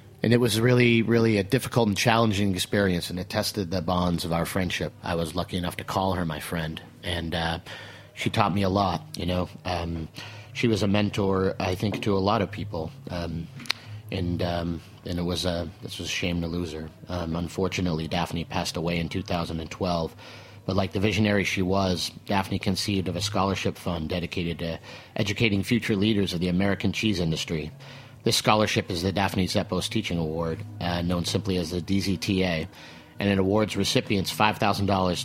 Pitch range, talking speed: 90-110 Hz, 185 wpm